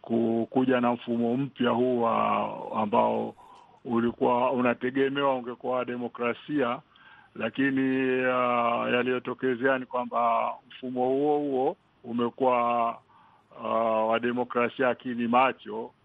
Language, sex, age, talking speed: Swahili, male, 60-79, 90 wpm